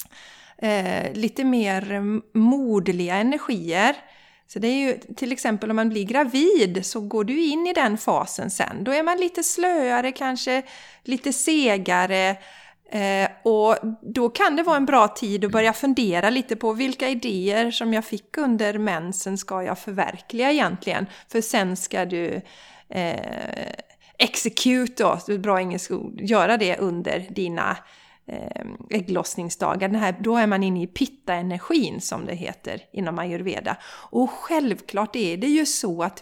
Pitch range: 195-265 Hz